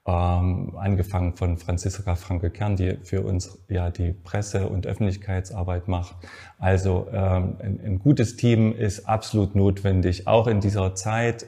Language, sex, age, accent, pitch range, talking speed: German, male, 30-49, German, 95-115 Hz, 145 wpm